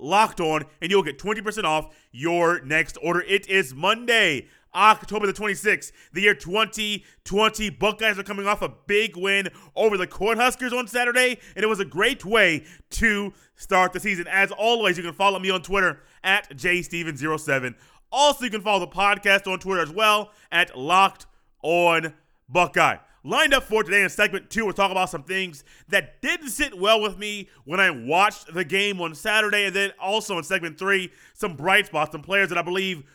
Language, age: English, 30-49